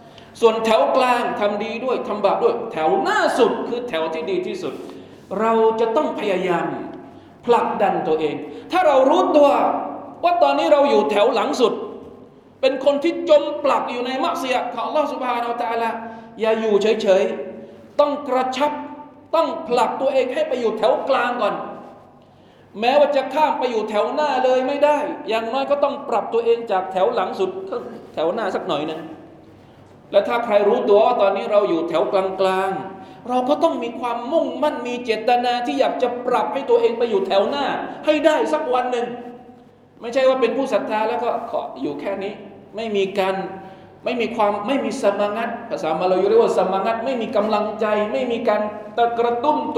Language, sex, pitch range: Thai, male, 205-285 Hz